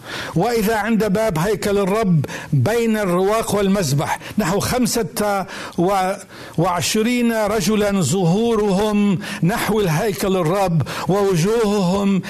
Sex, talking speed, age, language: male, 85 wpm, 60-79, Arabic